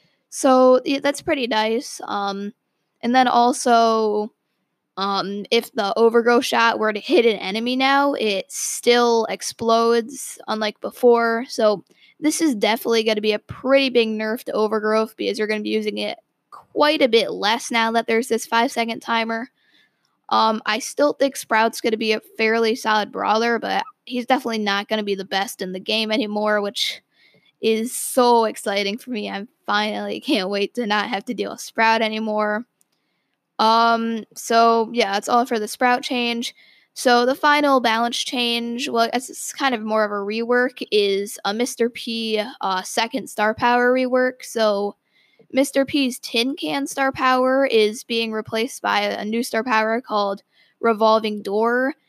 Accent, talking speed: American, 170 wpm